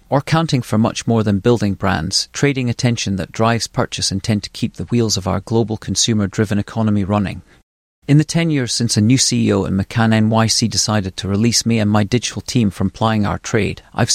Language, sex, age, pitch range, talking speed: English, male, 40-59, 100-115 Hz, 205 wpm